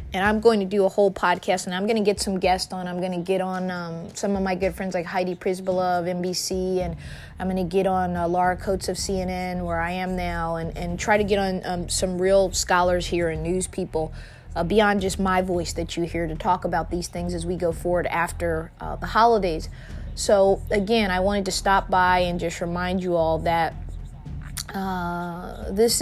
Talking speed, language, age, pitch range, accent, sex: 225 wpm, English, 20-39, 175-200 Hz, American, female